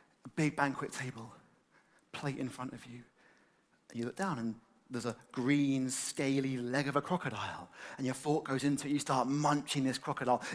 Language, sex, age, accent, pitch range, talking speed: English, male, 30-49, British, 140-200 Hz, 175 wpm